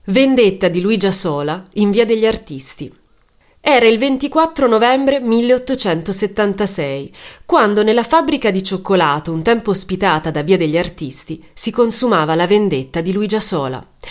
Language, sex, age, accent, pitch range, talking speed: Italian, female, 30-49, native, 175-245 Hz, 135 wpm